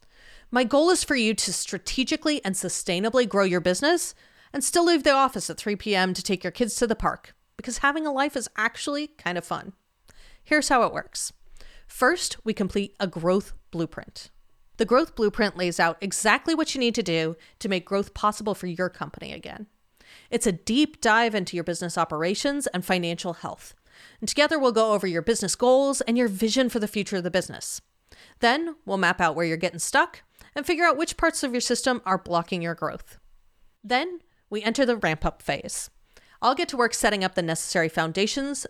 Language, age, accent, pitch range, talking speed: English, 30-49, American, 180-260 Hz, 200 wpm